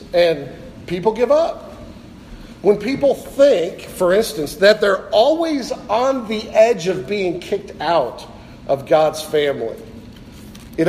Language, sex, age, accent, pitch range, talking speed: English, male, 50-69, American, 180-255 Hz, 125 wpm